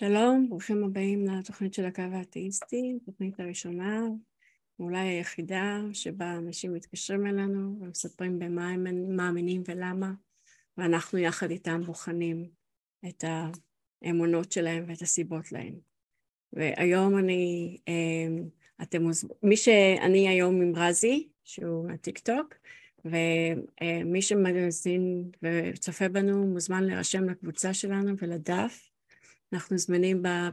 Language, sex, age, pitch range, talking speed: Hebrew, female, 30-49, 170-195 Hz, 105 wpm